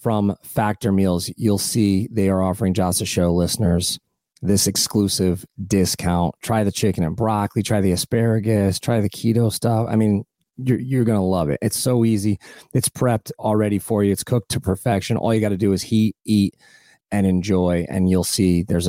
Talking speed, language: 190 wpm, English